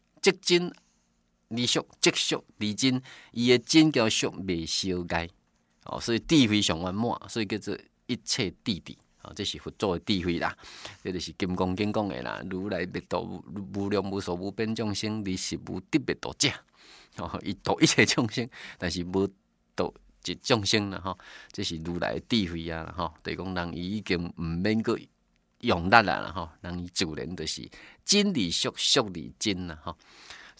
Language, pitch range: Chinese, 85-110 Hz